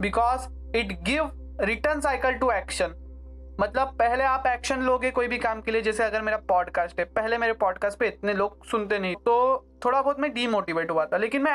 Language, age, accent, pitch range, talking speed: Hindi, 20-39, native, 195-260 Hz, 205 wpm